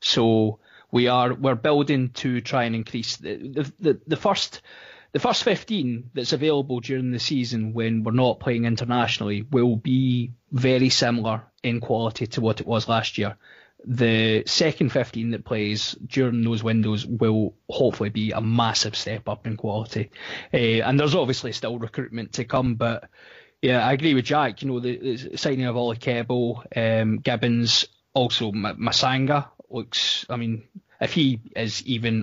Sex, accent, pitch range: male, British, 110-130 Hz